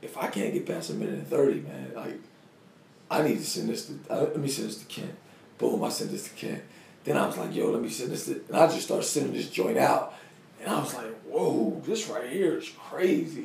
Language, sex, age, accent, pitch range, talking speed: English, male, 40-59, American, 150-205 Hz, 260 wpm